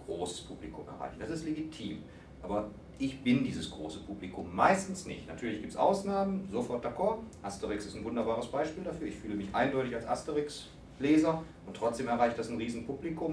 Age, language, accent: 40-59, German, German